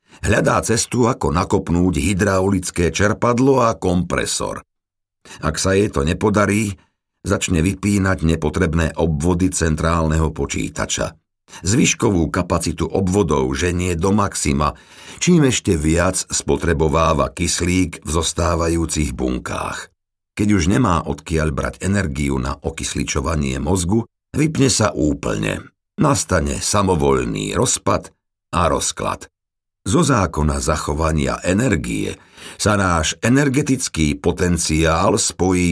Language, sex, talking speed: Slovak, male, 100 wpm